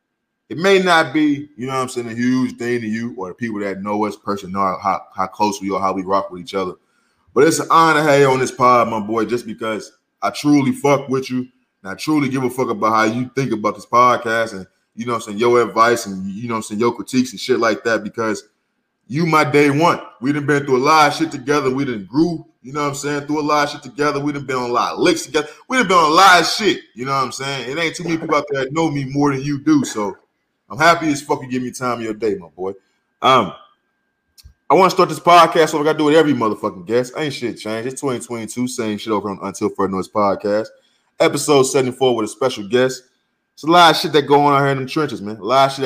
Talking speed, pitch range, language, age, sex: 285 wpm, 115-145 Hz, English, 20-39, male